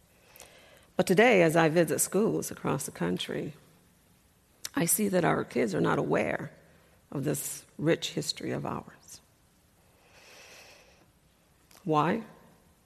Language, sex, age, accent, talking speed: English, female, 50-69, American, 110 wpm